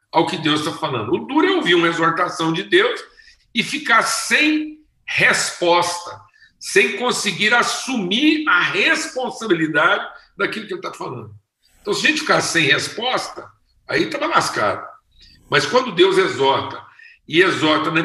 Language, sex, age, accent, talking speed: Portuguese, male, 60-79, Brazilian, 145 wpm